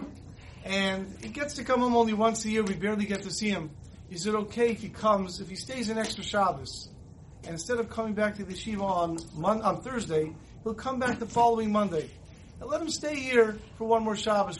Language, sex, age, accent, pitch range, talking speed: English, male, 40-59, American, 170-225 Hz, 220 wpm